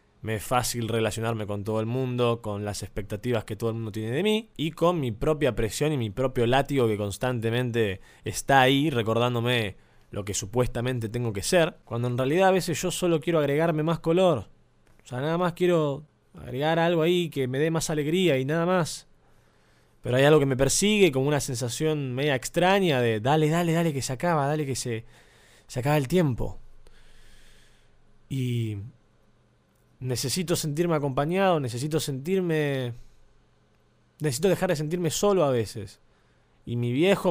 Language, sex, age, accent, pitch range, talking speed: Spanish, male, 20-39, Argentinian, 120-165 Hz, 170 wpm